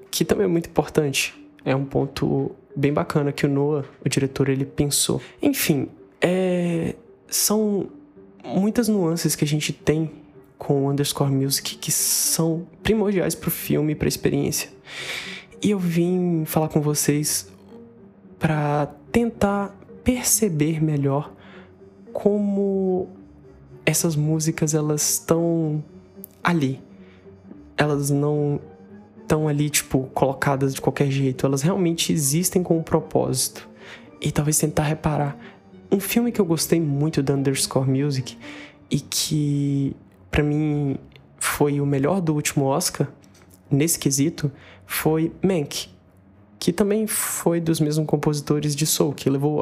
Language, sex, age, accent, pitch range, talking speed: Portuguese, male, 20-39, Brazilian, 140-175 Hz, 130 wpm